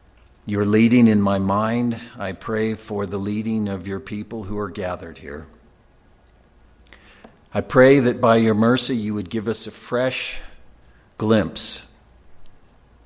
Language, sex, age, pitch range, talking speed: English, male, 50-69, 95-120 Hz, 140 wpm